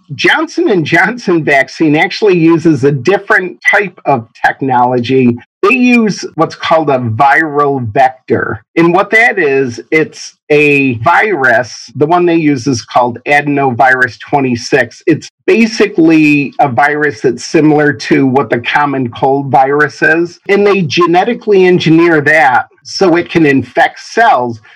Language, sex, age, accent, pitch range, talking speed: English, male, 50-69, American, 135-175 Hz, 135 wpm